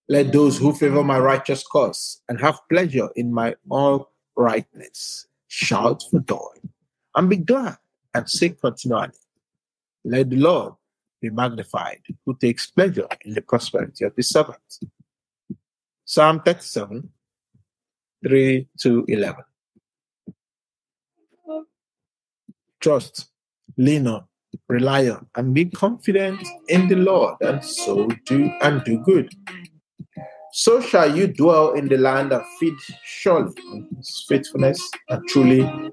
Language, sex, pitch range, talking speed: English, male, 130-185 Hz, 125 wpm